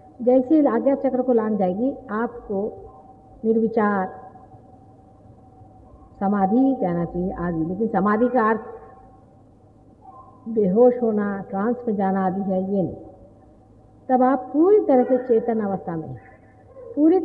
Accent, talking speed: Indian, 115 wpm